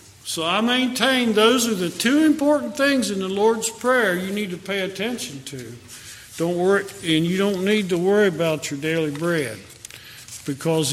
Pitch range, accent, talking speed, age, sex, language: 145-205 Hz, American, 175 wpm, 50-69, male, English